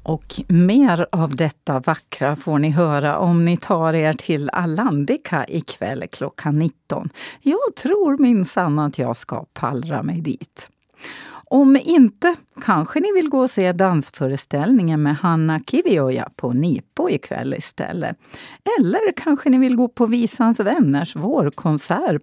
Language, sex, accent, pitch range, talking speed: Swedish, female, native, 145-235 Hz, 140 wpm